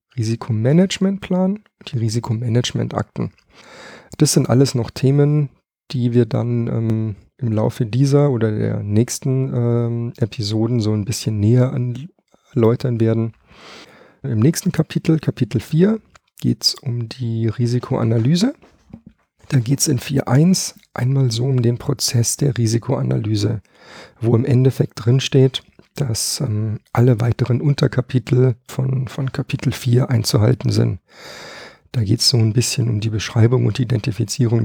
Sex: male